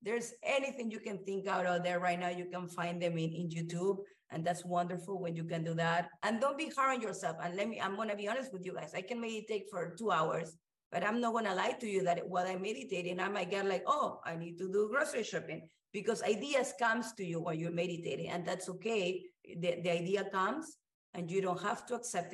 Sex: female